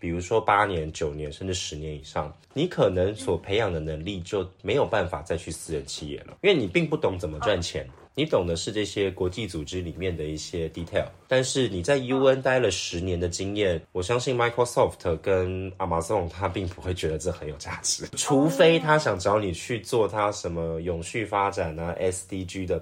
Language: Chinese